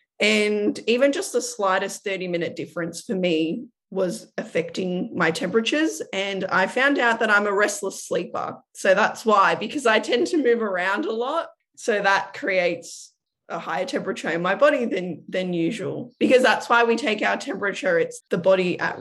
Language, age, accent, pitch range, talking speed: English, 20-39, Australian, 180-235 Hz, 175 wpm